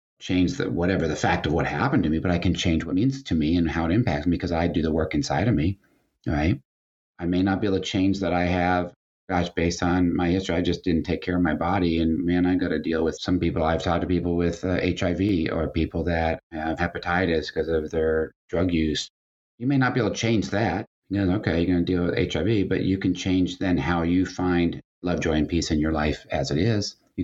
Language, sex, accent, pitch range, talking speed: English, male, American, 80-95 Hz, 255 wpm